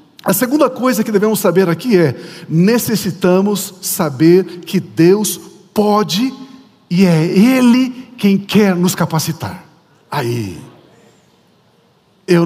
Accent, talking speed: Brazilian, 105 wpm